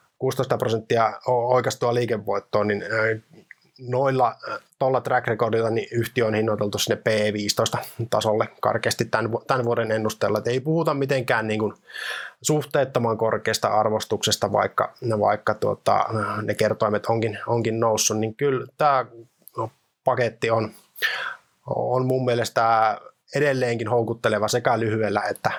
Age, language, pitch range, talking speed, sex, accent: 20-39, Finnish, 110-125 Hz, 110 wpm, male, native